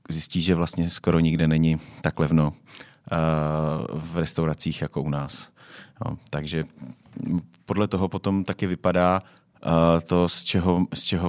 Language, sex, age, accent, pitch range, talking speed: Czech, male, 30-49, native, 80-90 Hz, 120 wpm